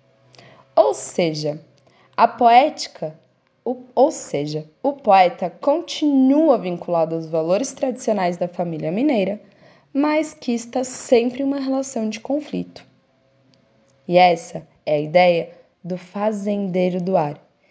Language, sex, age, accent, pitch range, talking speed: Portuguese, female, 10-29, Brazilian, 180-245 Hz, 120 wpm